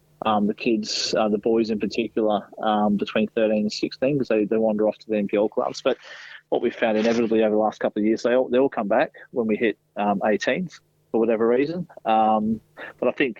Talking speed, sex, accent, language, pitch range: 230 wpm, male, Australian, English, 110-130 Hz